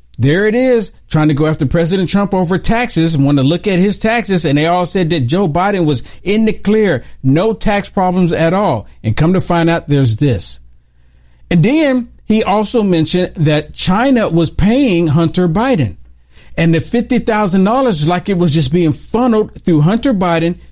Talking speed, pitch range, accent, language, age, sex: 185 wpm, 130-185 Hz, American, English, 50-69, male